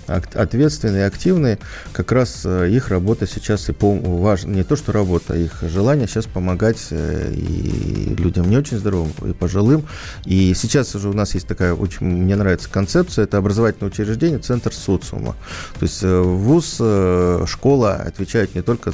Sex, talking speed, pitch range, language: male, 155 wpm, 90-110 Hz, Russian